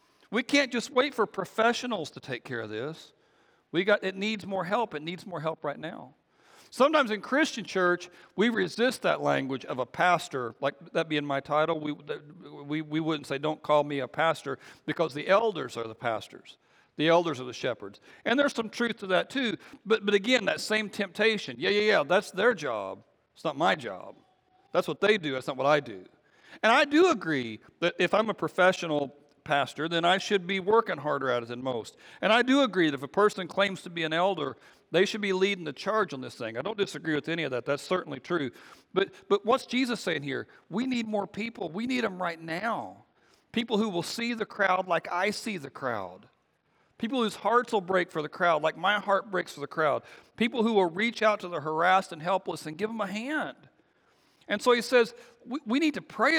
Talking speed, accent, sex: 220 wpm, American, male